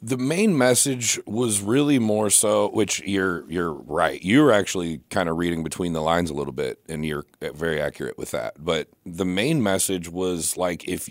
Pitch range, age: 90-105 Hz, 40-59